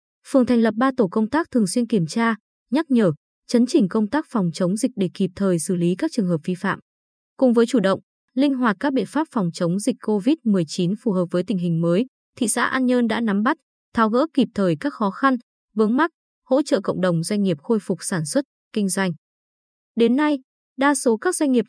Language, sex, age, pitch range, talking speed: Vietnamese, female, 20-39, 190-250 Hz, 230 wpm